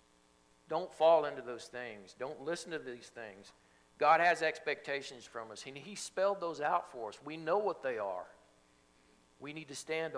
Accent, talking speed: American, 175 wpm